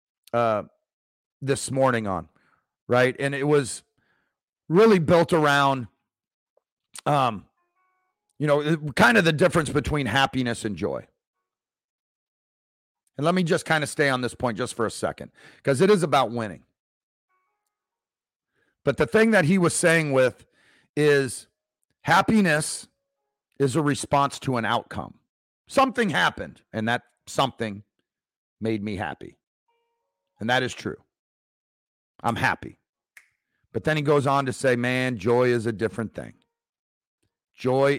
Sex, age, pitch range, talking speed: male, 40-59, 115-155 Hz, 135 wpm